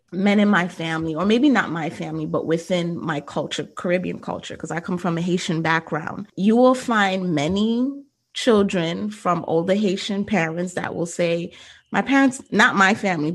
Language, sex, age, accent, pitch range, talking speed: English, female, 20-39, American, 170-200 Hz, 175 wpm